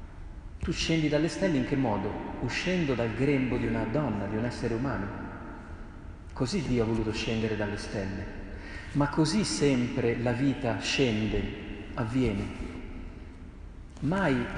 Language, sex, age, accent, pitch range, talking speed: Italian, male, 30-49, native, 100-135 Hz, 130 wpm